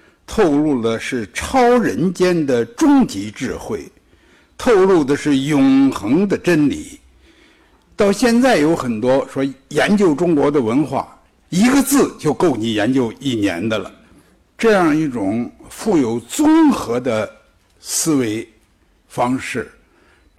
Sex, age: male, 60-79